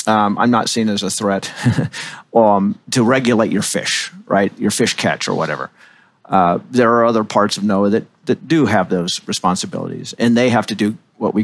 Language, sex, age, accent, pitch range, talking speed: English, male, 40-59, American, 100-125 Hz, 200 wpm